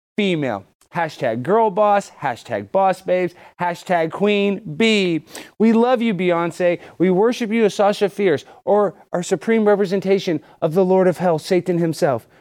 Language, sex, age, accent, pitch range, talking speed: English, male, 30-49, American, 195-265 Hz, 150 wpm